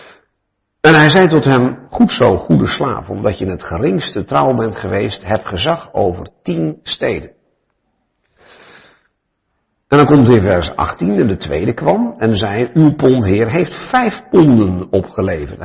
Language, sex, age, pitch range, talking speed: Finnish, male, 60-79, 105-145 Hz, 155 wpm